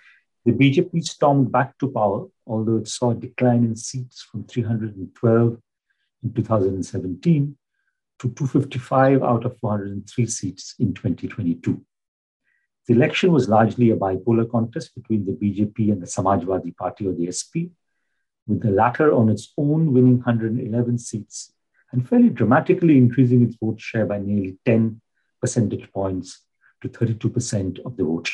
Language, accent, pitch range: English, Indian, 105-130 Hz